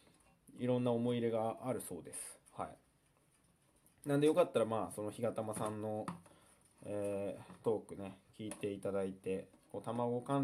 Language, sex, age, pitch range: Japanese, male, 20-39, 100-150 Hz